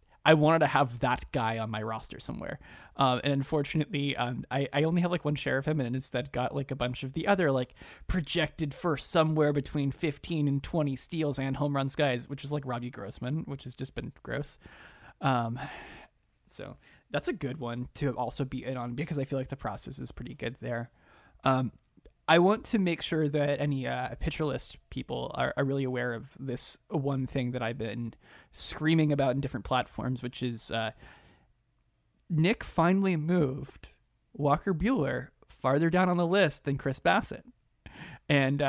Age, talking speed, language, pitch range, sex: 30-49, 190 wpm, English, 125-155 Hz, male